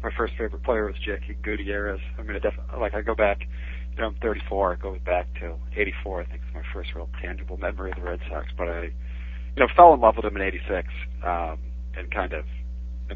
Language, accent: English, American